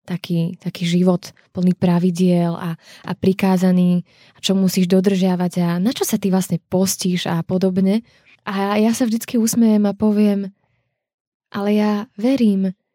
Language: Slovak